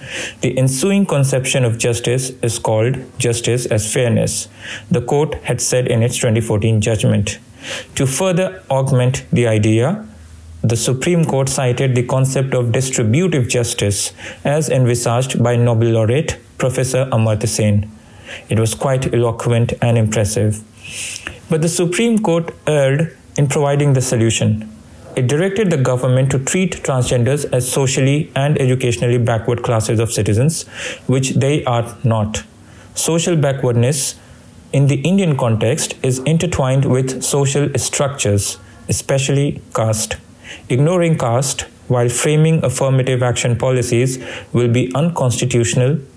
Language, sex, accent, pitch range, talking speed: English, male, Indian, 115-140 Hz, 125 wpm